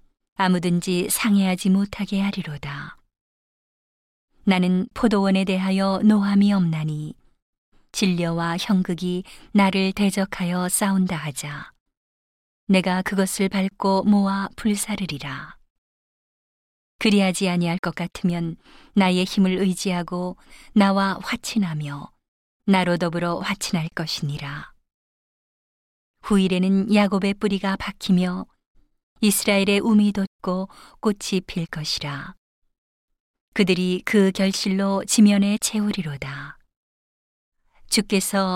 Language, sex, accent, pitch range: Korean, female, native, 175-205 Hz